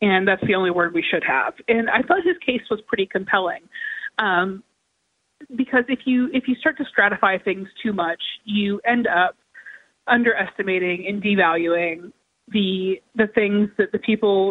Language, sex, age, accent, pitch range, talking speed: English, female, 20-39, American, 185-235 Hz, 165 wpm